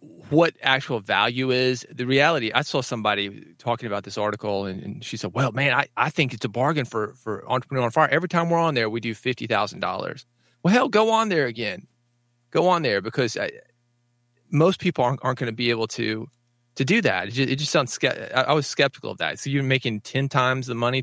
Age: 30-49